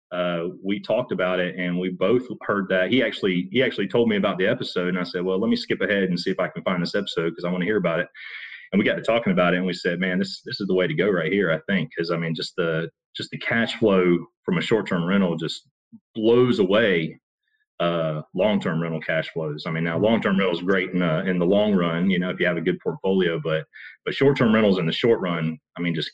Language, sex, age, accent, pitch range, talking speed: English, male, 30-49, American, 85-95 Hz, 275 wpm